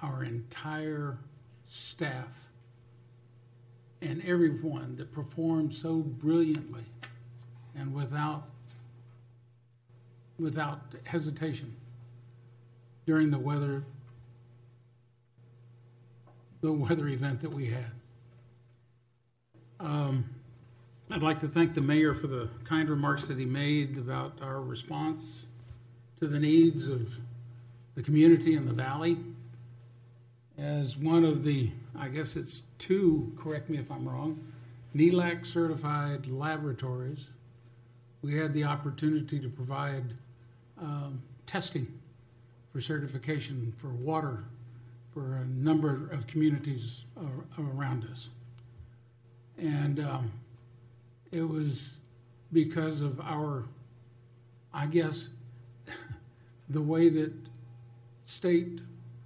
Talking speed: 95 wpm